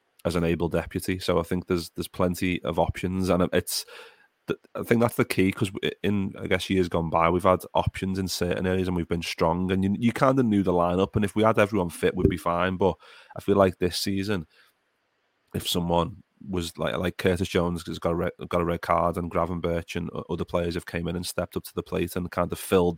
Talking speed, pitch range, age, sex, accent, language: 245 wpm, 85-95 Hz, 30-49, male, British, English